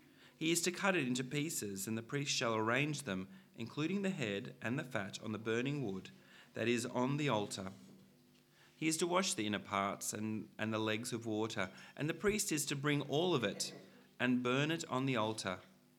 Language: English